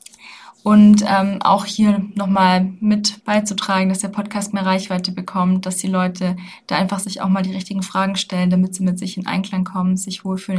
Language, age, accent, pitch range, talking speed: German, 20-39, German, 185-210 Hz, 195 wpm